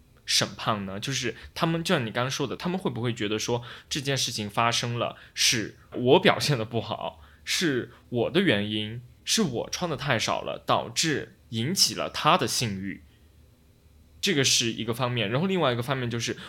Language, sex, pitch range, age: Chinese, male, 105-130 Hz, 20-39